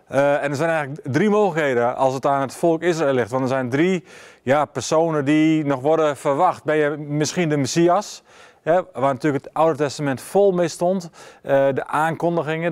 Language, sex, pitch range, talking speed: Dutch, male, 140-170 Hz, 185 wpm